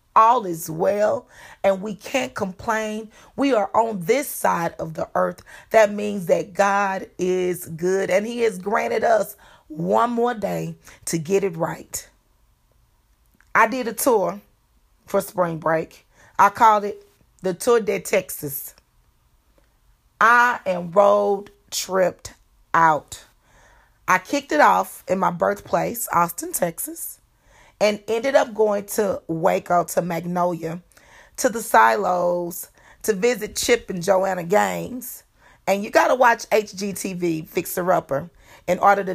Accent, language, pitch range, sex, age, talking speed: American, English, 175-215 Hz, female, 30-49, 135 wpm